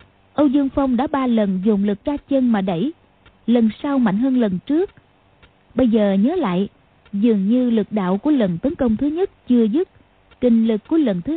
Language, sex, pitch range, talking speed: Vietnamese, female, 205-280 Hz, 205 wpm